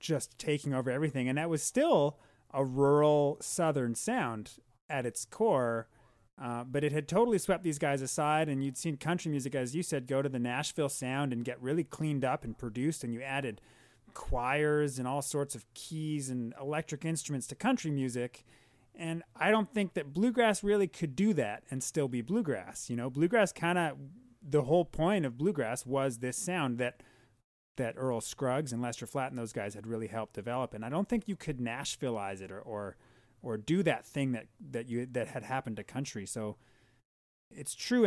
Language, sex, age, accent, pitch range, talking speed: English, male, 30-49, American, 120-155 Hz, 195 wpm